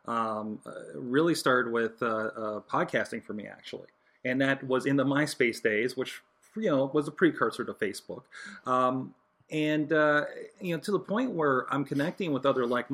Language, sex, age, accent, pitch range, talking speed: English, male, 30-49, American, 125-155 Hz, 185 wpm